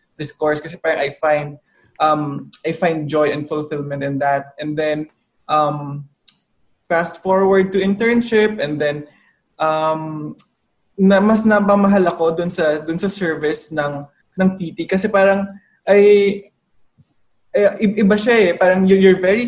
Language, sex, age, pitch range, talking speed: English, male, 20-39, 155-195 Hz, 150 wpm